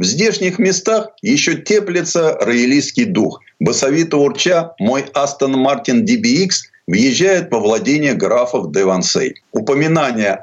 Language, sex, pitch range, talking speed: Russian, male, 125-175 Hz, 115 wpm